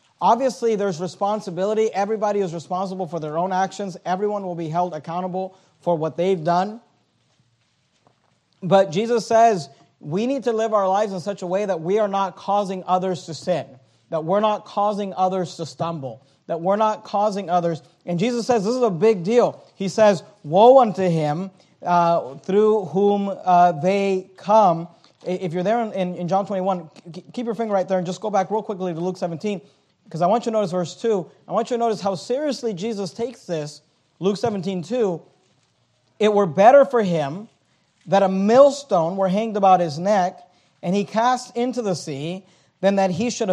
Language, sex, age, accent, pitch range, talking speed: English, male, 40-59, American, 175-215 Hz, 185 wpm